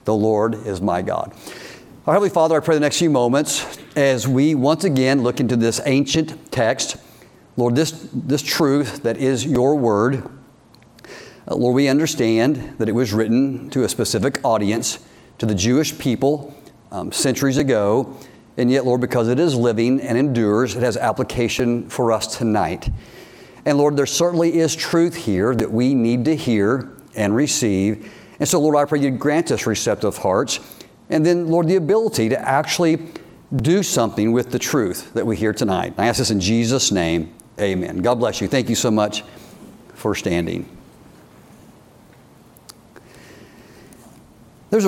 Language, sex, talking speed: English, male, 165 wpm